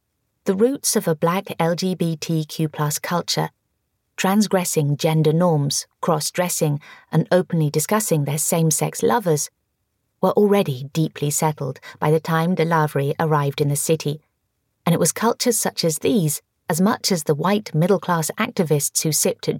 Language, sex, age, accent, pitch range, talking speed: English, female, 30-49, British, 155-185 Hz, 140 wpm